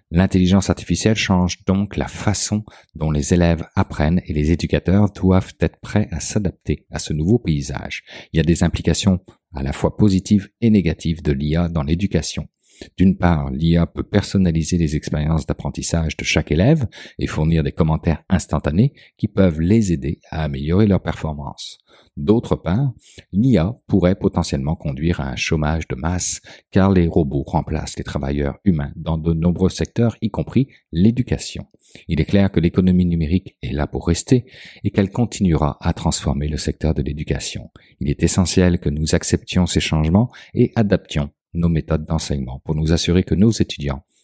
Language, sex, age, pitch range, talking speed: French, male, 50-69, 80-100 Hz, 170 wpm